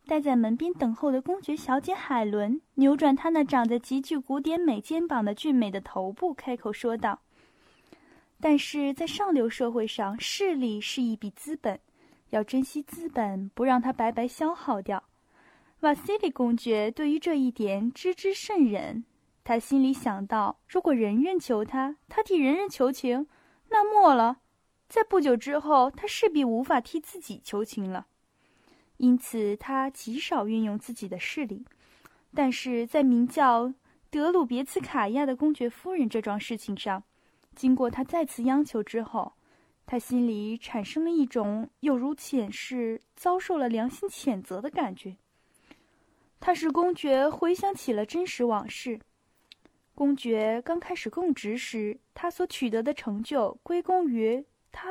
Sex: female